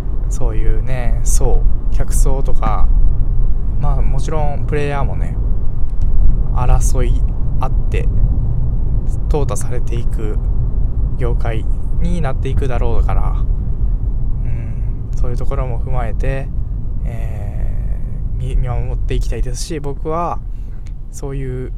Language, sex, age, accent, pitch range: Japanese, male, 20-39, native, 105-135 Hz